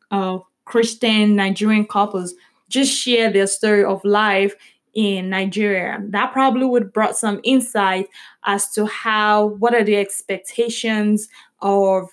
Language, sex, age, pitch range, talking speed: English, female, 10-29, 200-230 Hz, 130 wpm